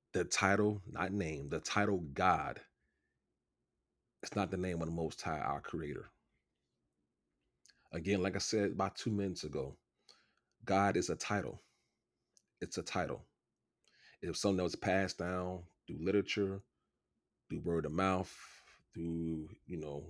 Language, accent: English, American